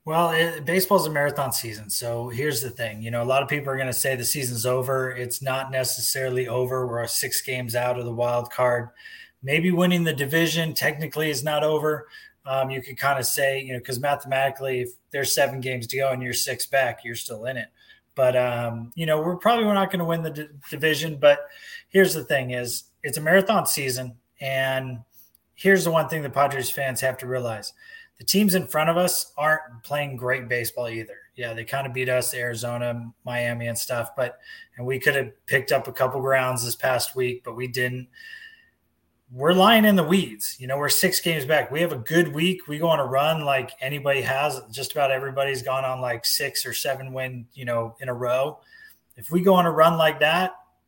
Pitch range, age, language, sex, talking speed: 125-165 Hz, 20-39, English, male, 220 wpm